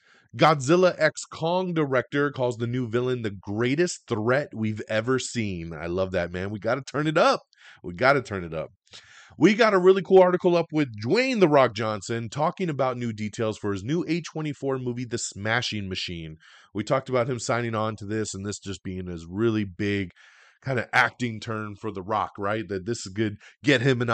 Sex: male